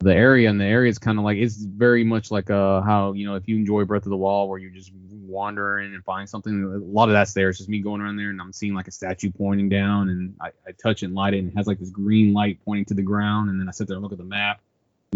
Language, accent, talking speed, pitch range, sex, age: English, American, 315 wpm, 95-105 Hz, male, 20-39